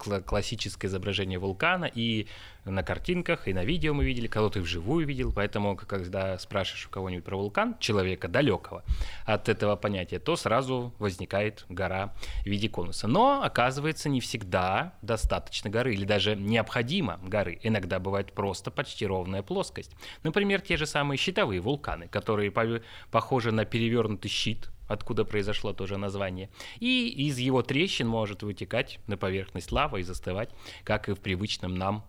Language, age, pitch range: Russian, 20-39, 95-125 Hz